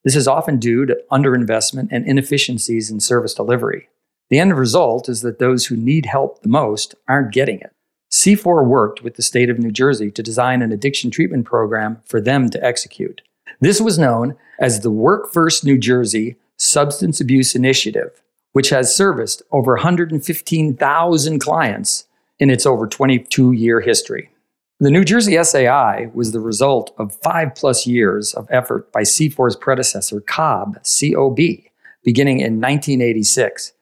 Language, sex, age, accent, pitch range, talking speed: English, male, 50-69, American, 115-145 Hz, 155 wpm